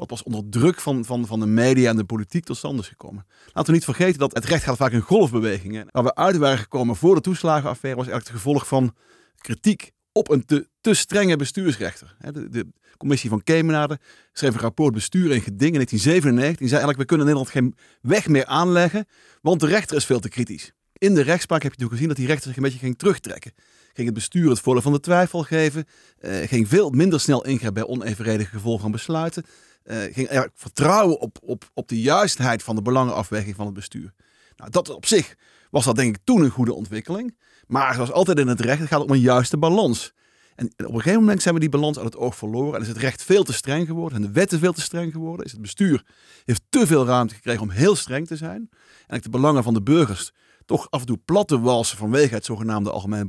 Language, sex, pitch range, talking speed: Dutch, male, 115-160 Hz, 230 wpm